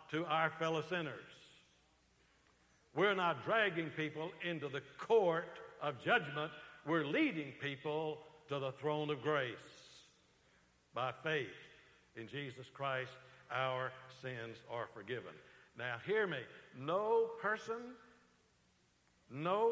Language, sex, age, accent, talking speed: English, male, 60-79, American, 110 wpm